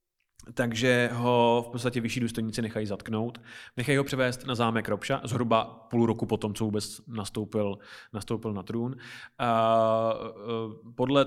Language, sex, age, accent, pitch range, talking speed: Czech, male, 20-39, native, 110-120 Hz, 140 wpm